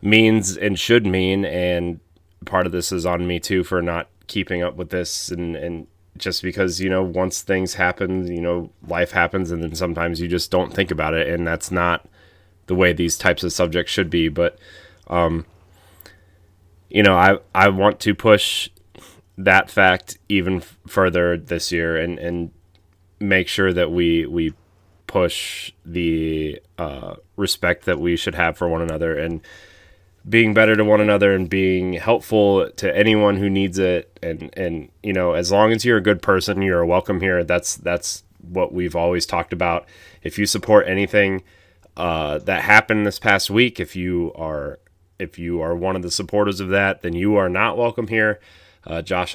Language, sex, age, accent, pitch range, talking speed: English, male, 30-49, American, 85-95 Hz, 180 wpm